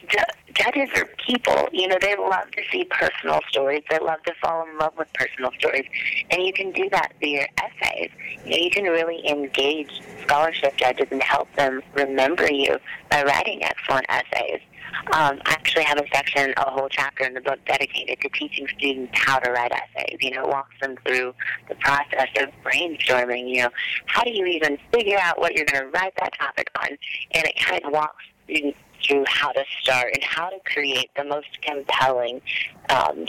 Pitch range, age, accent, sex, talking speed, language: 130-160 Hz, 40-59, American, female, 195 wpm, English